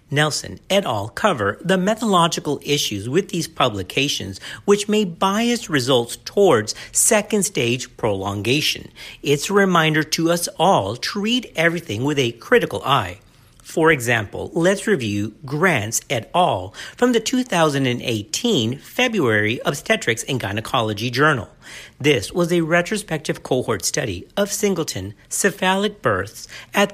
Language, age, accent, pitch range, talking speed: English, 50-69, American, 120-200 Hz, 125 wpm